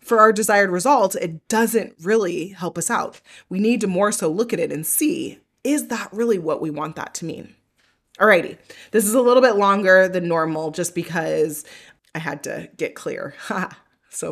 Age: 20-39